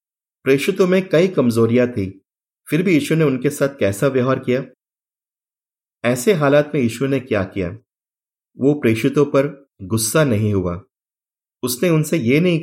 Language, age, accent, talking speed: Hindi, 30-49, native, 145 wpm